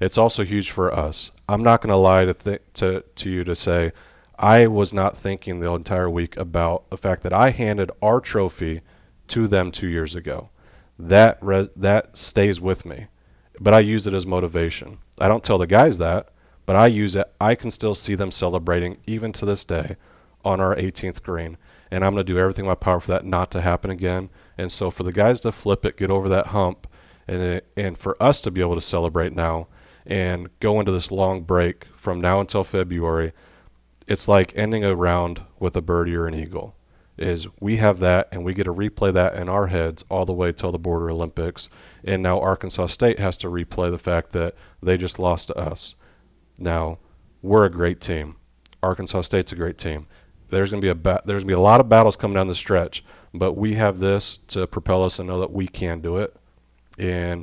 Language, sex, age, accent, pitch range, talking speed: English, male, 30-49, American, 85-100 Hz, 210 wpm